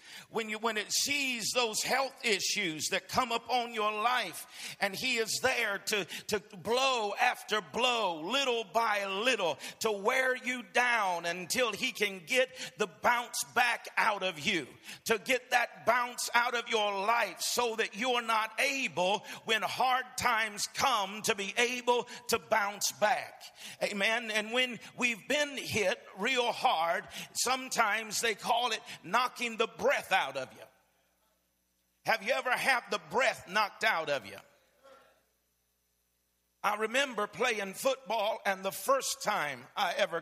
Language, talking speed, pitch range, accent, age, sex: English, 150 wpm, 170-245 Hz, American, 50-69, male